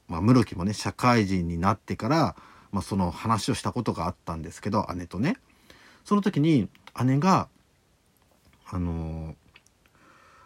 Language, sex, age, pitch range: Japanese, male, 50-69, 90-135 Hz